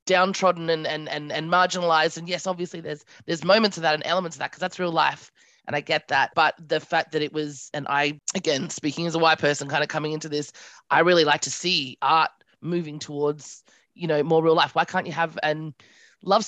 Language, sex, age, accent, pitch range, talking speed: English, female, 20-39, Australian, 150-185 Hz, 235 wpm